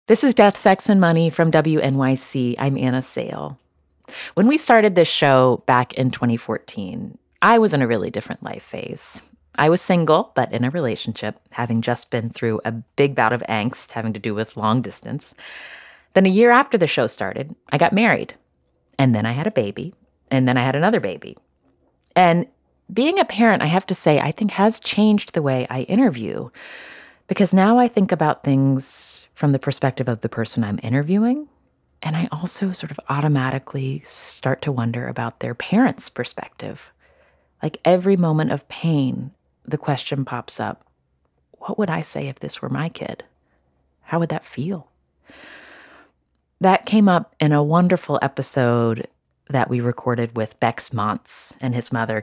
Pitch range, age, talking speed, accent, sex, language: 115-180 Hz, 30-49, 175 wpm, American, female, English